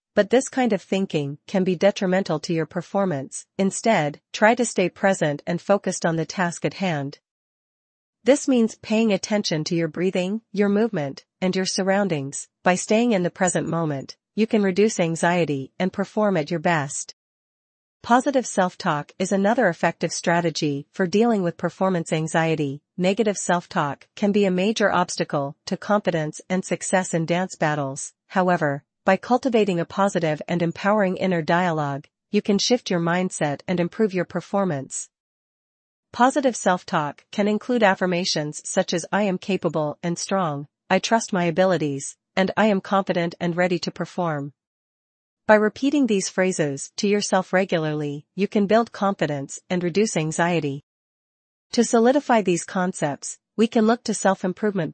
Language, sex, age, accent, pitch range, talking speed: English, female, 40-59, American, 165-205 Hz, 155 wpm